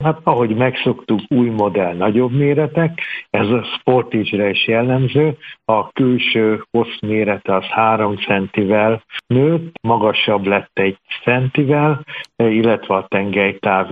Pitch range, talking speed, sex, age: 100-115 Hz, 120 wpm, male, 60-79